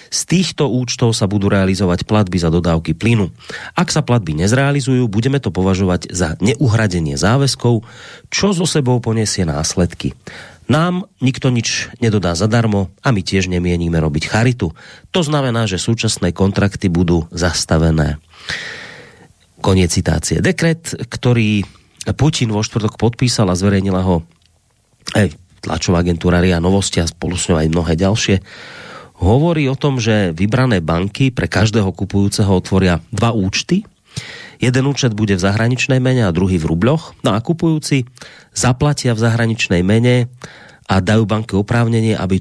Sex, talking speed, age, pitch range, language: male, 140 wpm, 40-59, 90-120 Hz, Slovak